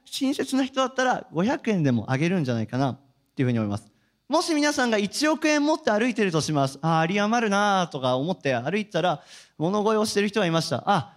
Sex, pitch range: male, 145-245 Hz